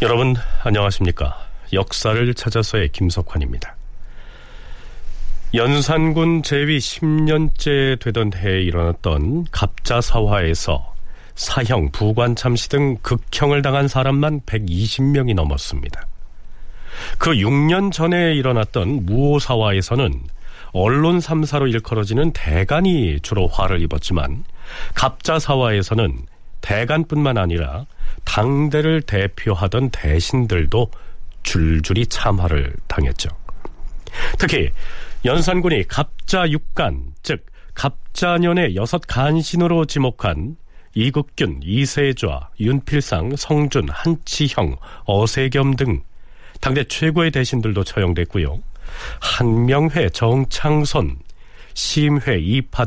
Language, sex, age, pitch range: Korean, male, 40-59, 90-145 Hz